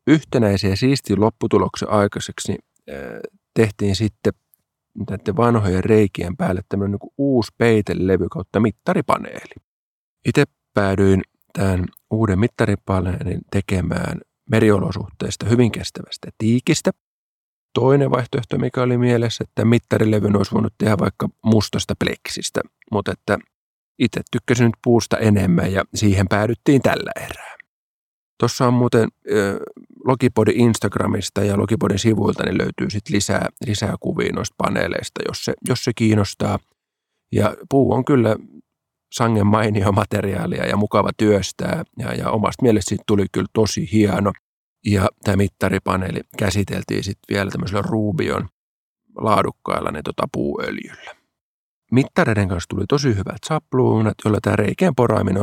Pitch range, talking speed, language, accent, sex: 100-120 Hz, 120 wpm, Finnish, native, male